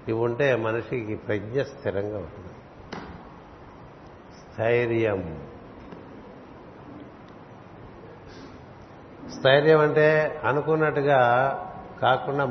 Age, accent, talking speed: 60-79, native, 55 wpm